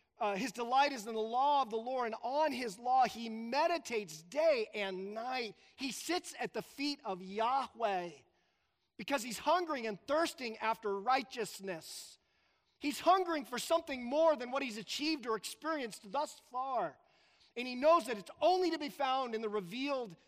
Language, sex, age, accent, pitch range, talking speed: English, male, 40-59, American, 195-260 Hz, 170 wpm